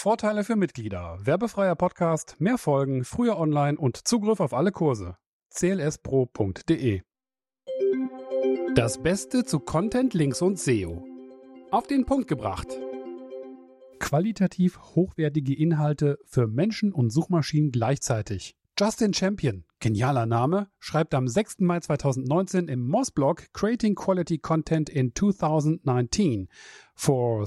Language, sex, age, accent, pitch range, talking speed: German, male, 40-59, German, 130-180 Hz, 115 wpm